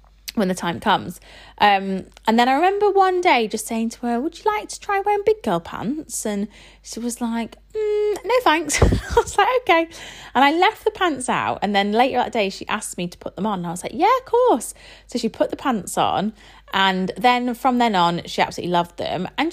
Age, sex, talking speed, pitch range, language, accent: 30-49, female, 235 wpm, 200-305 Hz, English, British